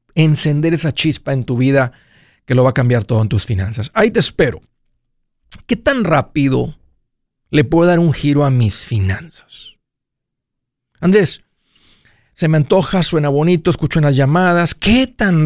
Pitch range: 130-165 Hz